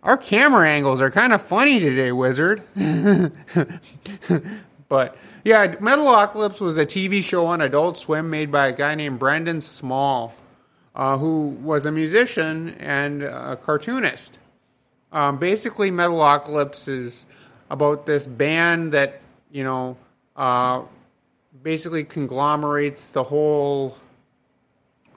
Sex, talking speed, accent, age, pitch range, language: male, 120 wpm, American, 30-49, 135-165 Hz, English